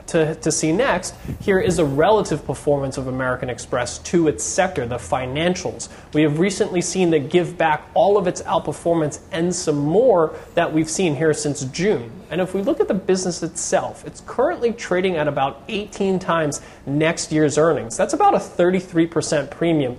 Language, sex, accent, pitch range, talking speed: English, male, American, 145-180 Hz, 180 wpm